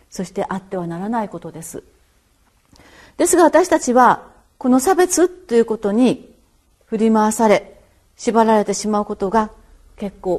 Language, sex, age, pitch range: Japanese, female, 40-59, 215-275 Hz